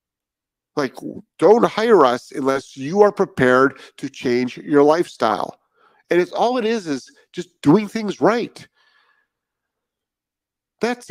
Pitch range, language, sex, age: 130-210 Hz, English, male, 50-69